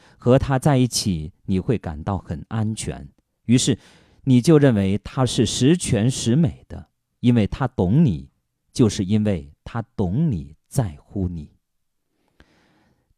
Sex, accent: male, native